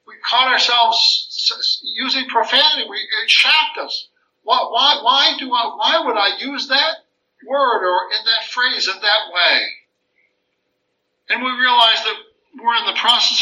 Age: 60-79